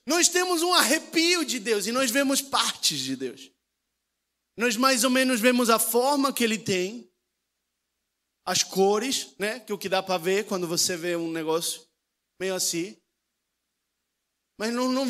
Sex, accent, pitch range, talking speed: male, Brazilian, 215-300 Hz, 165 wpm